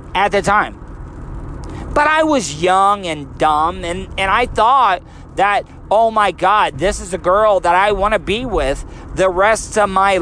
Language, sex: English, male